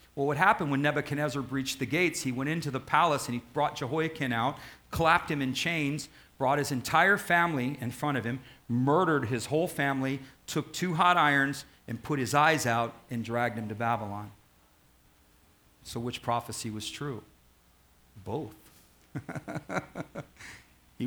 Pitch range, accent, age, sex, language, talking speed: 110-145 Hz, American, 40-59, male, English, 155 wpm